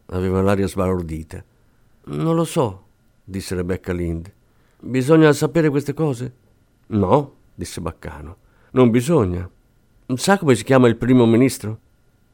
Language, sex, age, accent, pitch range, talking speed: Italian, male, 50-69, native, 110-155 Hz, 120 wpm